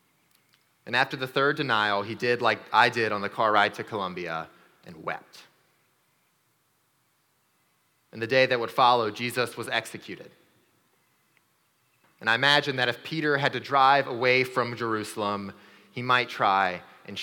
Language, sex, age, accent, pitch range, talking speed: English, male, 30-49, American, 125-150 Hz, 150 wpm